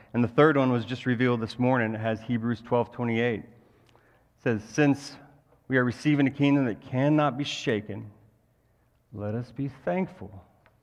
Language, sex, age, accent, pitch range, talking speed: English, male, 40-59, American, 115-145 Hz, 165 wpm